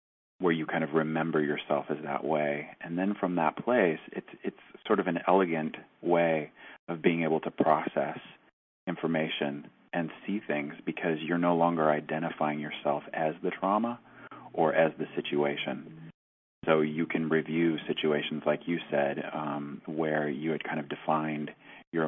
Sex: male